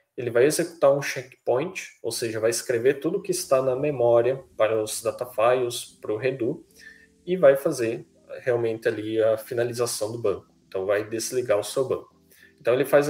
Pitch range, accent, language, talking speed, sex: 120-175 Hz, Brazilian, English, 175 wpm, male